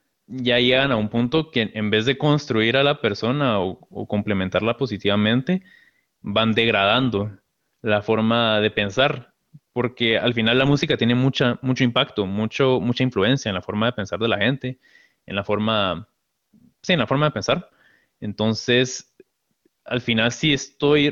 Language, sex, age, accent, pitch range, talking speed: Spanish, male, 20-39, Mexican, 110-135 Hz, 160 wpm